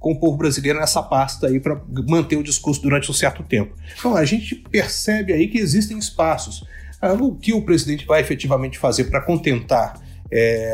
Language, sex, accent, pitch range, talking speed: Portuguese, male, Brazilian, 130-185 Hz, 185 wpm